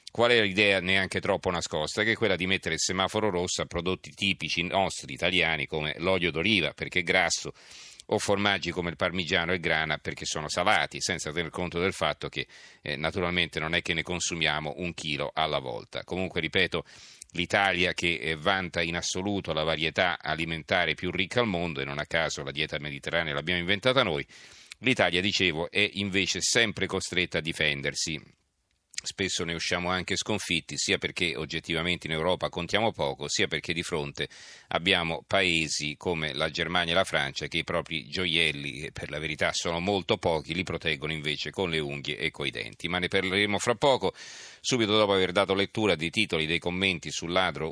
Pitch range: 80-95 Hz